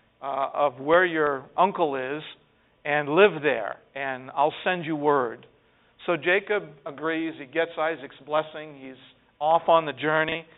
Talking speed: 145 wpm